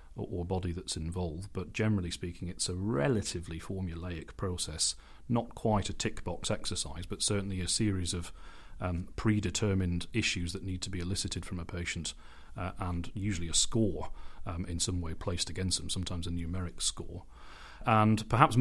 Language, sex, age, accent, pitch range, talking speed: English, male, 40-59, British, 85-100 Hz, 170 wpm